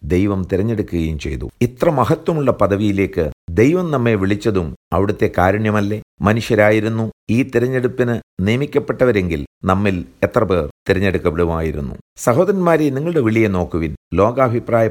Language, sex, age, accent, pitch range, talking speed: Malayalam, male, 50-69, native, 90-125 Hz, 95 wpm